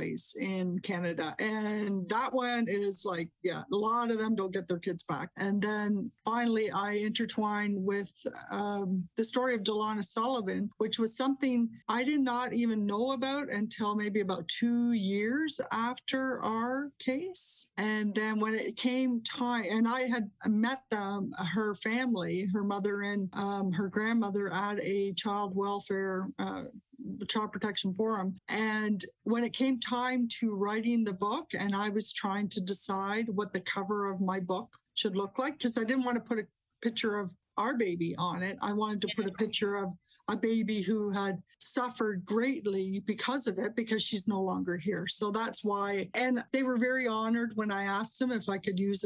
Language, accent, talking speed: English, American, 180 wpm